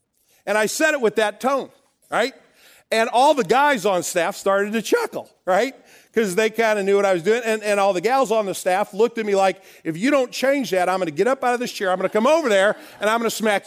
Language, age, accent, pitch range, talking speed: English, 40-59, American, 180-240 Hz, 270 wpm